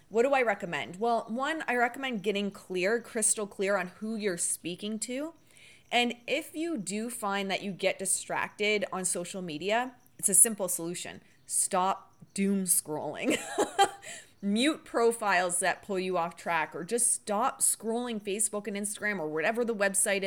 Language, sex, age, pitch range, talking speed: English, female, 20-39, 175-230 Hz, 160 wpm